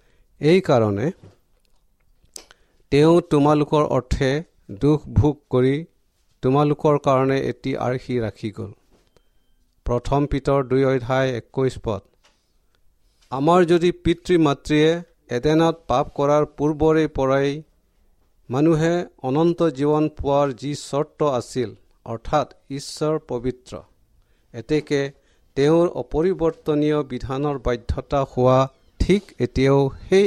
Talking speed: 95 wpm